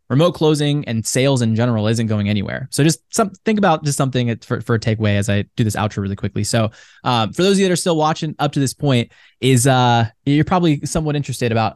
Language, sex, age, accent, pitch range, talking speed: English, male, 20-39, American, 105-130 Hz, 245 wpm